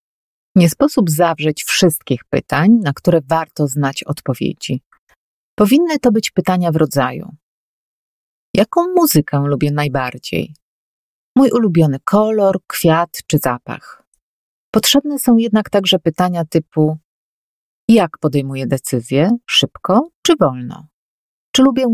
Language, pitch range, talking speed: Polish, 145-215 Hz, 110 wpm